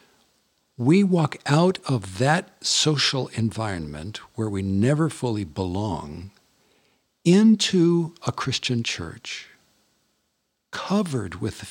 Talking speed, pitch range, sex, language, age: 95 wpm, 100-145 Hz, male, English, 60-79